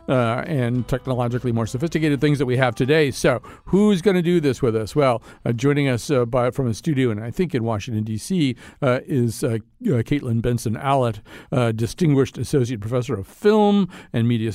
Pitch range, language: 115-150 Hz, English